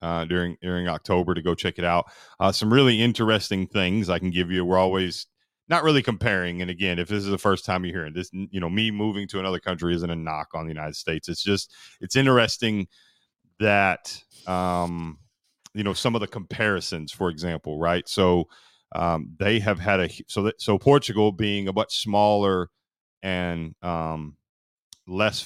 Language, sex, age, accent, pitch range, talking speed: English, male, 30-49, American, 85-100 Hz, 190 wpm